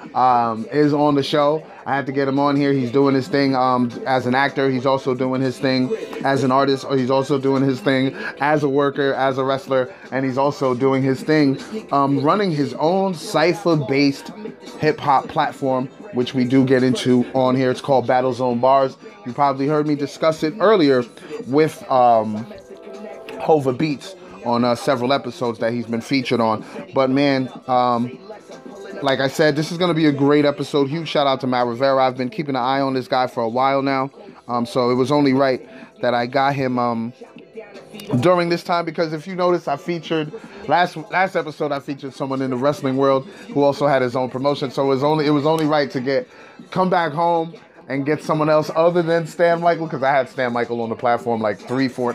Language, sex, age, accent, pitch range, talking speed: English, male, 30-49, American, 130-155 Hz, 210 wpm